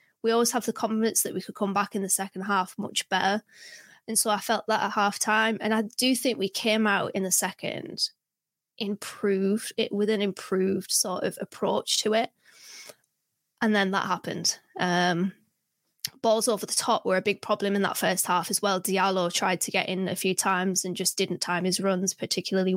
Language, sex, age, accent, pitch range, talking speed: English, female, 20-39, British, 180-205 Hz, 205 wpm